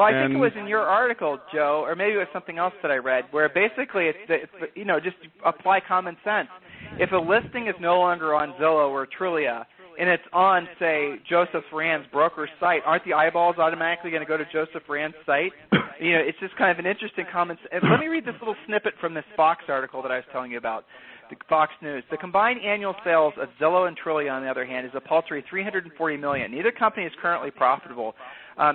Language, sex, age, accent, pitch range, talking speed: English, male, 40-59, American, 150-185 Hz, 225 wpm